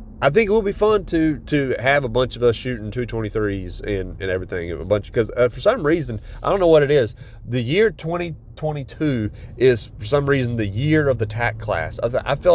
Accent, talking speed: American, 235 wpm